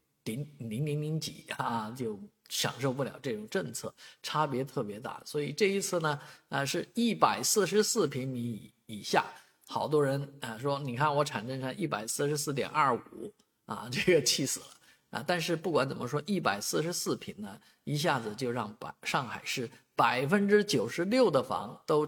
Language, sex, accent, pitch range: Chinese, male, native, 120-165 Hz